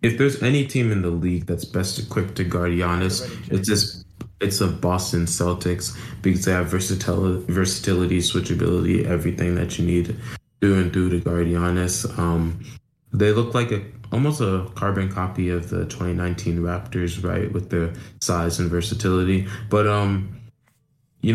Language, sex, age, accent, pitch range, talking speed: English, male, 20-39, American, 90-110 Hz, 160 wpm